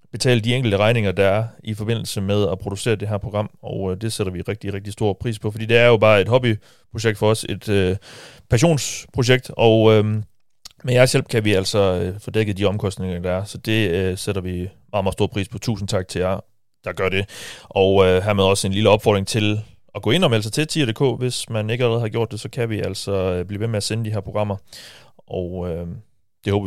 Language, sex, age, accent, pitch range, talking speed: Danish, male, 30-49, native, 100-125 Hz, 245 wpm